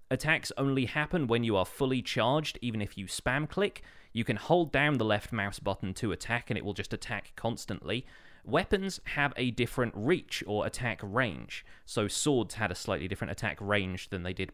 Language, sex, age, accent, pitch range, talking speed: English, male, 30-49, British, 100-130 Hz, 200 wpm